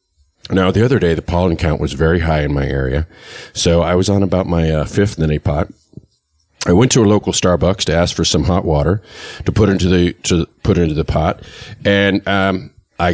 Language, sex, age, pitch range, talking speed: English, male, 40-59, 80-105 Hz, 215 wpm